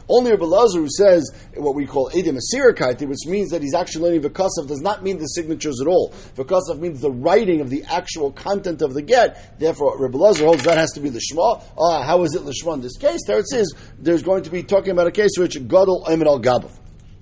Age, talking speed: 50-69, 235 wpm